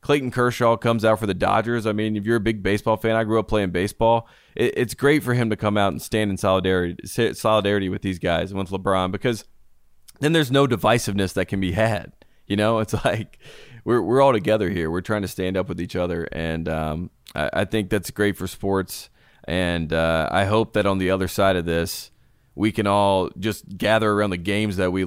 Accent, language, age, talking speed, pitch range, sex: American, English, 20-39, 225 wpm, 90-110 Hz, male